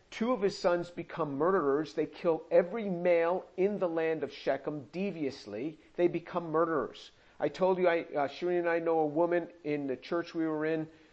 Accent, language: American, English